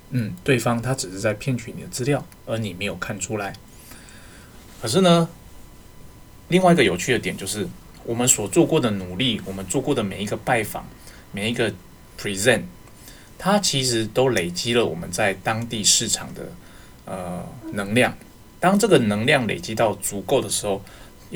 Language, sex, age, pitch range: Chinese, male, 20-39, 105-135 Hz